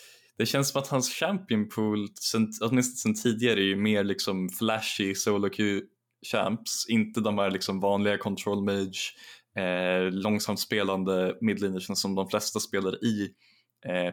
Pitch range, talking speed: 95-110 Hz, 150 wpm